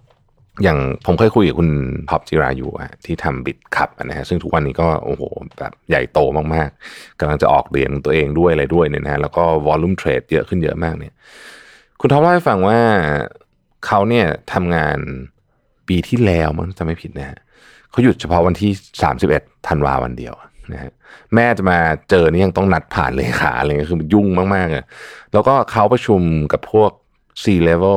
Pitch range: 80-105 Hz